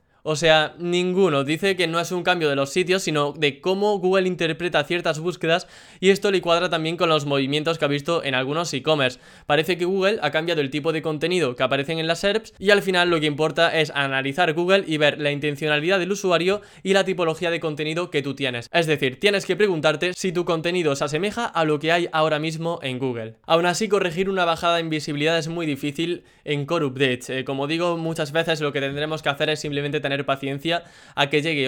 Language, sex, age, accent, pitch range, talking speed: Spanish, male, 10-29, Spanish, 150-180 Hz, 225 wpm